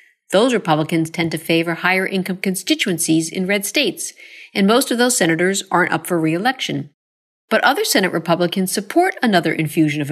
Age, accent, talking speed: 50-69, American, 160 wpm